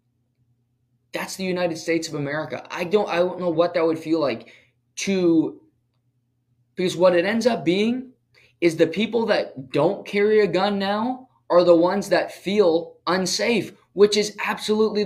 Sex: male